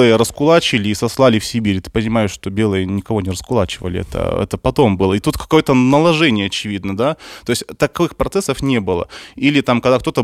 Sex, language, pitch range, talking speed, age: male, Russian, 100-125 Hz, 190 wpm, 20-39